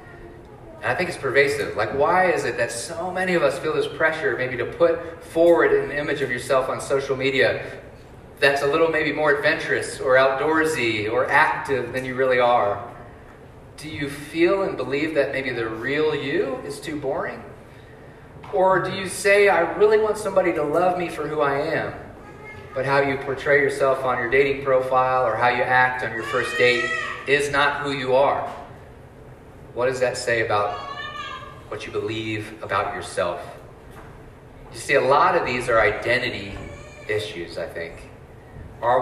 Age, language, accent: 30-49, English, American